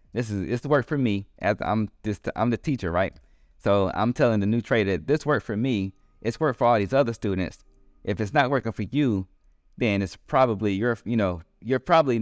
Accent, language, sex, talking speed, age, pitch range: American, English, male, 215 wpm, 20-39, 85-120 Hz